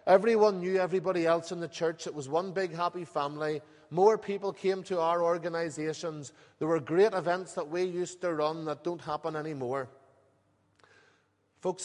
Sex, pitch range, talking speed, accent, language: male, 135-180 Hz, 165 wpm, Irish, English